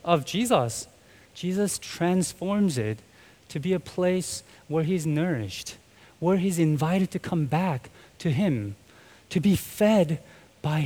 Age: 20-39